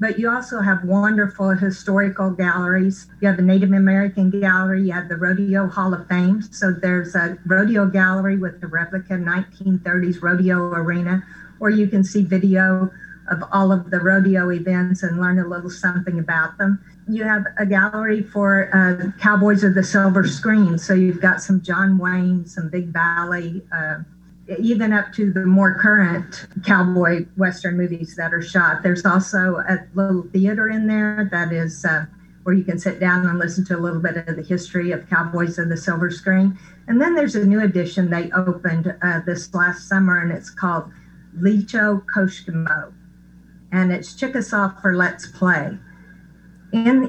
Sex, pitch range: female, 180-195 Hz